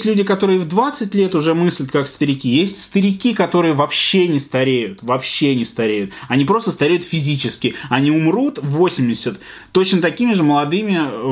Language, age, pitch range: Russian, 20-39, 125-165 Hz